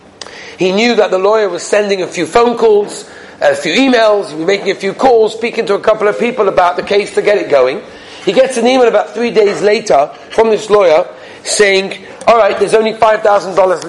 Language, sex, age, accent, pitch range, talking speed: English, male, 40-59, British, 190-265 Hz, 205 wpm